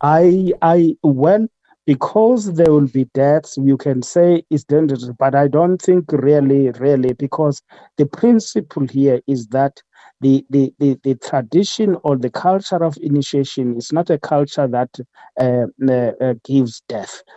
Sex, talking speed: male, 150 wpm